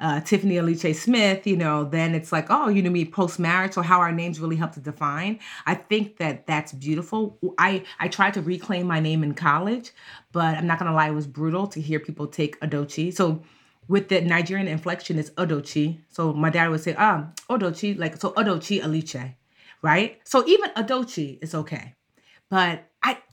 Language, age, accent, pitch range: English, 30-49, American, 160-205 Hz